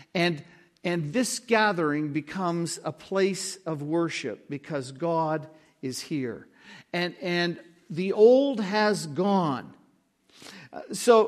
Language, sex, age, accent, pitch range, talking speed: English, male, 60-79, American, 155-200 Hz, 105 wpm